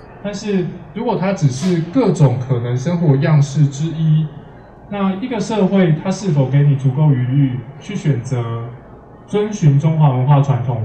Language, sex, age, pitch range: Chinese, male, 20-39, 130-165 Hz